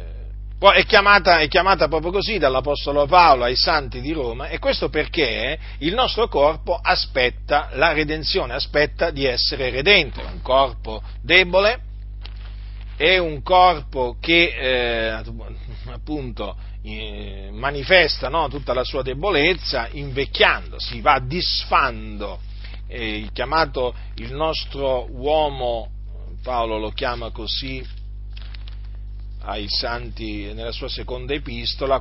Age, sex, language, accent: 40-59, male, Italian, native